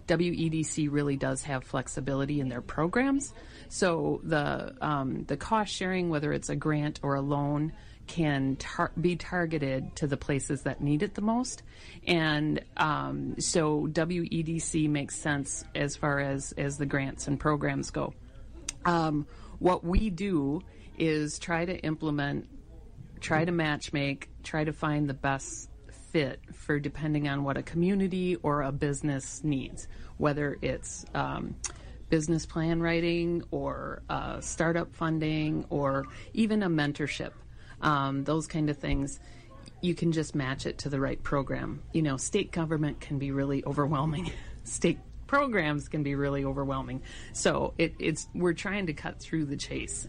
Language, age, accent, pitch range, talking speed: English, 40-59, American, 140-165 Hz, 155 wpm